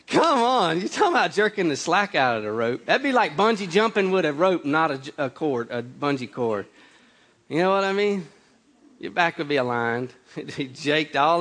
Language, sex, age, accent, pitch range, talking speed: English, male, 40-59, American, 150-215 Hz, 215 wpm